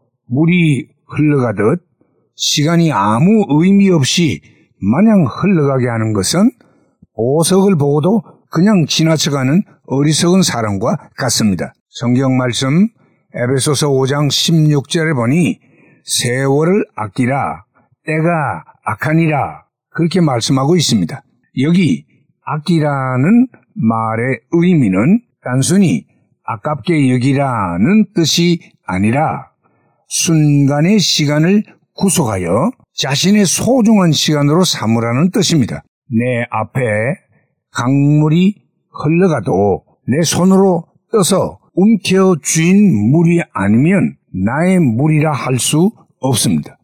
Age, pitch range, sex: 60-79, 135-180 Hz, male